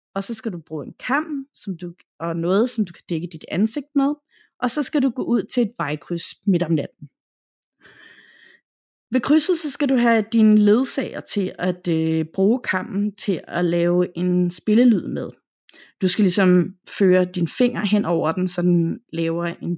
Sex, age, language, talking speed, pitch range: female, 30-49, Danish, 190 wpm, 180-250 Hz